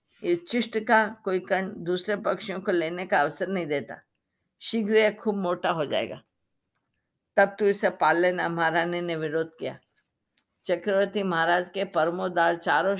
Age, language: 50-69, Hindi